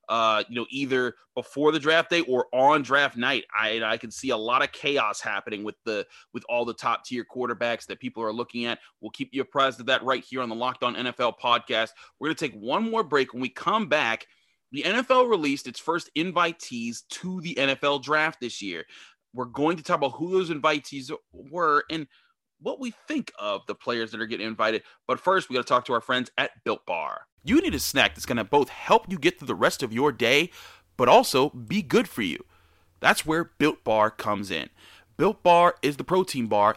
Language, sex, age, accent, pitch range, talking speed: English, male, 30-49, American, 120-170 Hz, 225 wpm